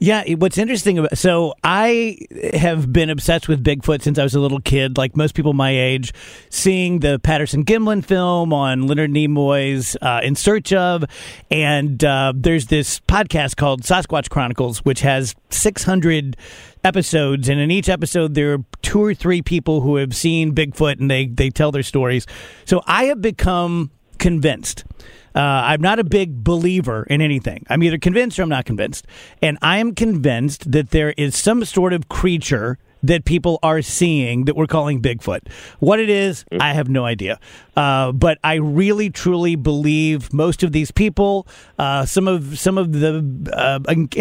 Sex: male